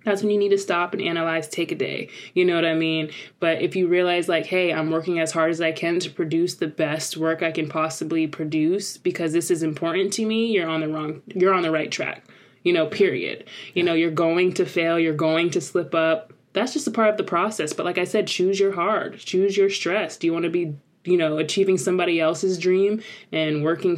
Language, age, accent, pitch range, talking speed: English, 20-39, American, 160-190 Hz, 245 wpm